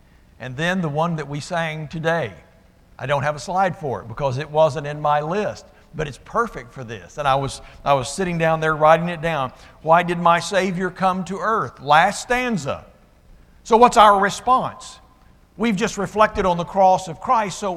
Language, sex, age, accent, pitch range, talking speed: English, male, 60-79, American, 130-185 Hz, 195 wpm